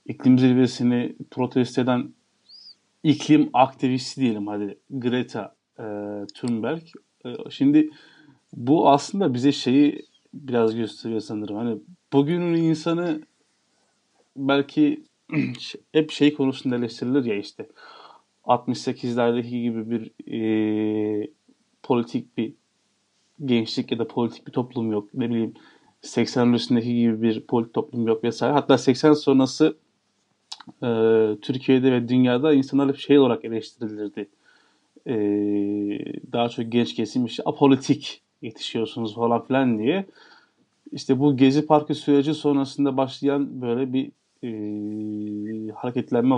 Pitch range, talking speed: 115-140 Hz, 105 wpm